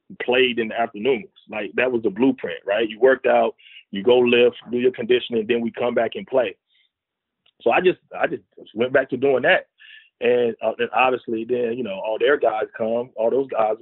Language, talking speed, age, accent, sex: English, 215 wpm, 30-49, American, male